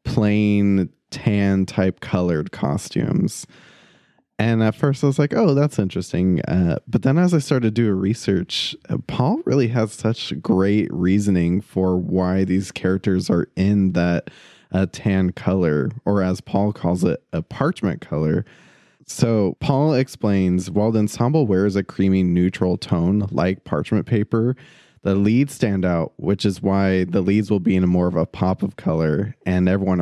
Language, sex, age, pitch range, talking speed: English, male, 20-39, 95-120 Hz, 160 wpm